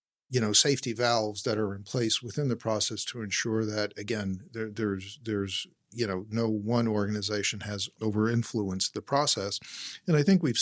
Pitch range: 105-120 Hz